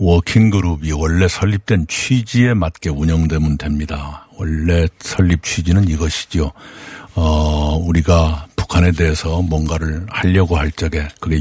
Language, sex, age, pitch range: Korean, male, 60-79, 80-95 Hz